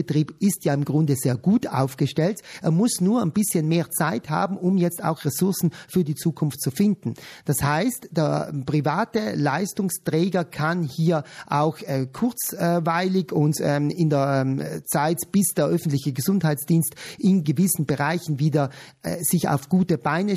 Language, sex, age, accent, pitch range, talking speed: German, male, 40-59, German, 145-185 Hz, 160 wpm